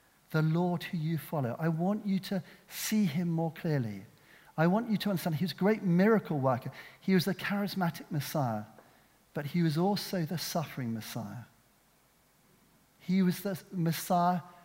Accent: British